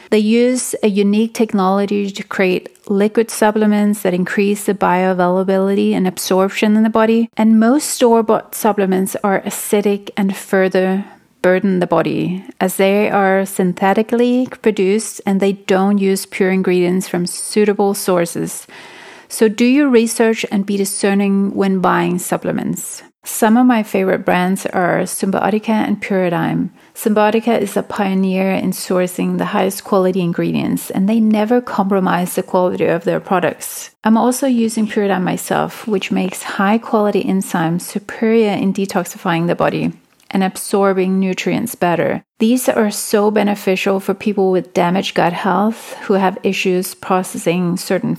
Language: English